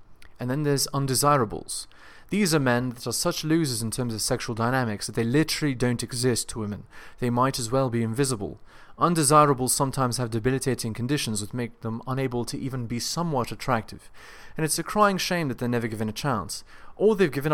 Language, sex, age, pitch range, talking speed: English, male, 30-49, 115-155 Hz, 195 wpm